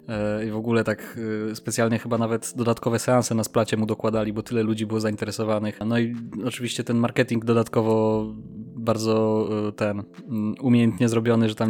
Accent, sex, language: native, male, Polish